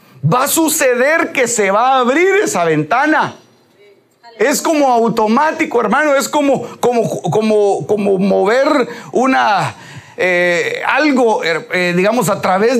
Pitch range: 230-310 Hz